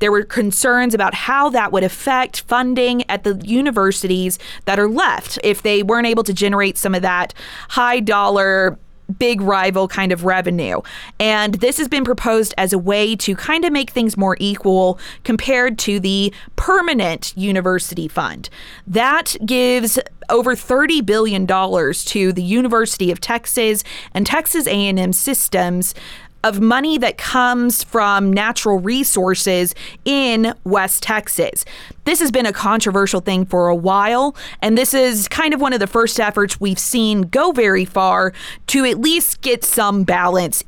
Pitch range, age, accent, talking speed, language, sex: 190-245 Hz, 20-39, American, 155 wpm, English, female